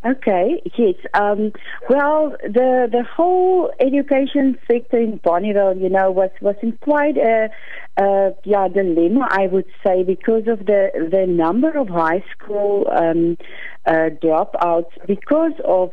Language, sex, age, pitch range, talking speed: English, female, 40-59, 170-220 Hz, 140 wpm